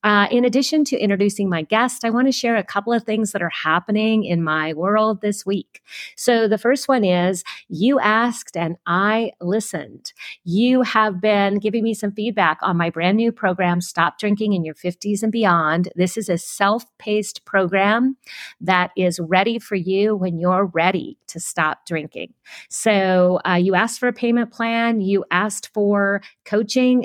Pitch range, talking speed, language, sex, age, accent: 180-225 Hz, 175 wpm, English, female, 40-59, American